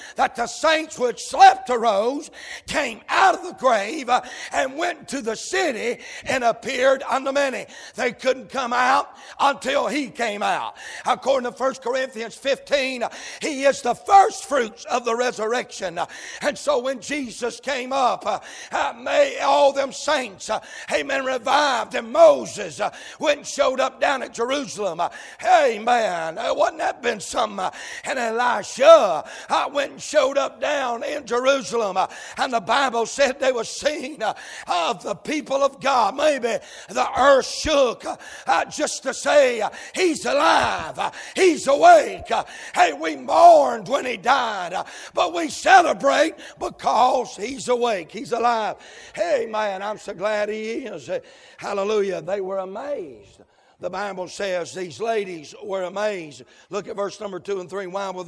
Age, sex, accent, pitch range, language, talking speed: 60-79, male, American, 220-285 Hz, English, 140 wpm